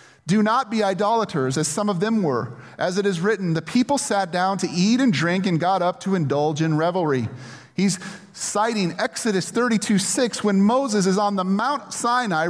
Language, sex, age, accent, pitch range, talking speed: English, male, 30-49, American, 145-195 Hz, 190 wpm